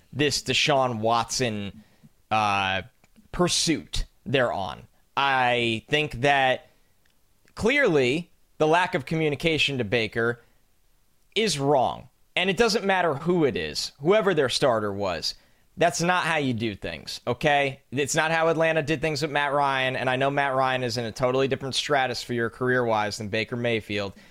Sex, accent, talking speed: male, American, 160 wpm